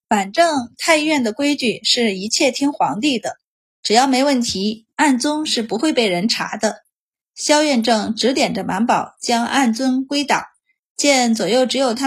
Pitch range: 215-285 Hz